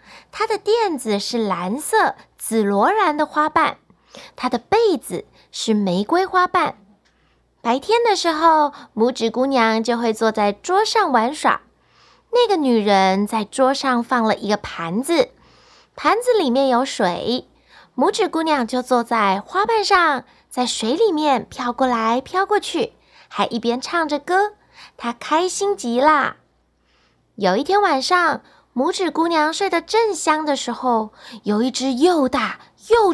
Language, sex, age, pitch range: Chinese, female, 20-39, 235-370 Hz